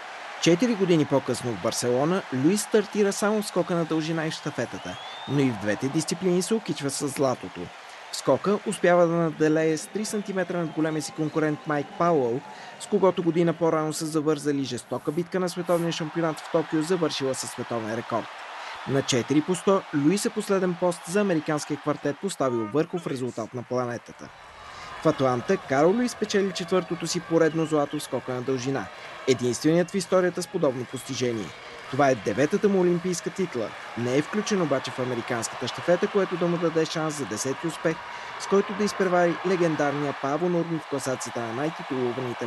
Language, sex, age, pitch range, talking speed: Bulgarian, male, 20-39, 130-180 Hz, 165 wpm